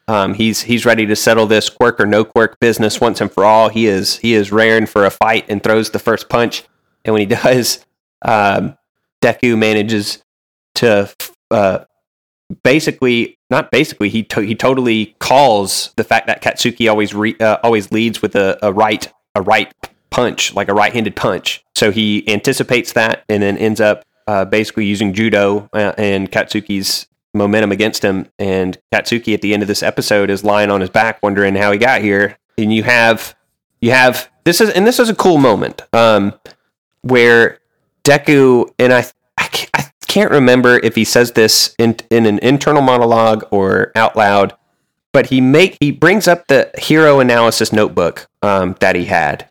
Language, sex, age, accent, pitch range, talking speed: English, male, 30-49, American, 105-120 Hz, 185 wpm